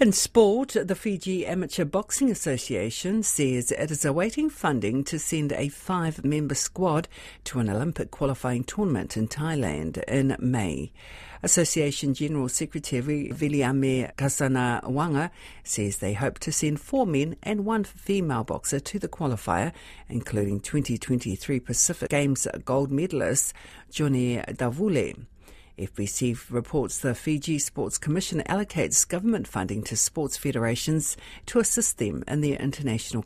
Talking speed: 130 wpm